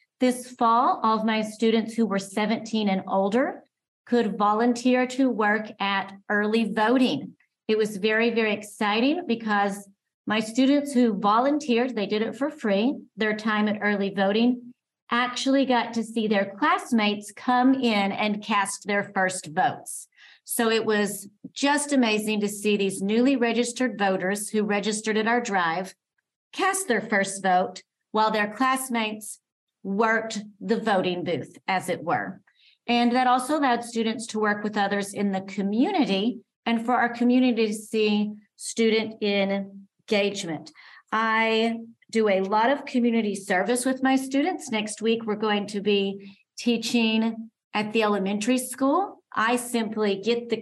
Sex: female